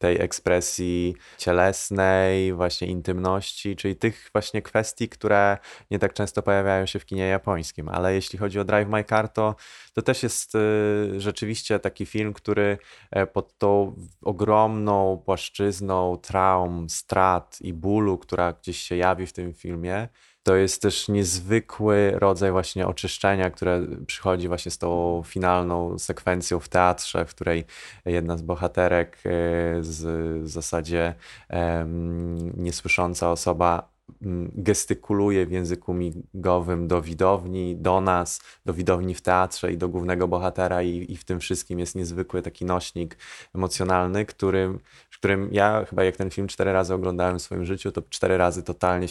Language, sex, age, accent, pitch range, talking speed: Polish, male, 20-39, native, 90-100 Hz, 140 wpm